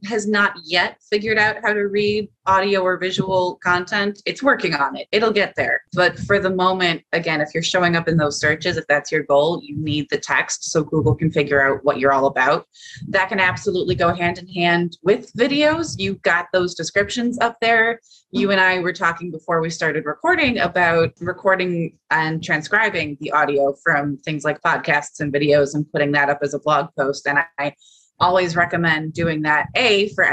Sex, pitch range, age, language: female, 145-180 Hz, 20-39, English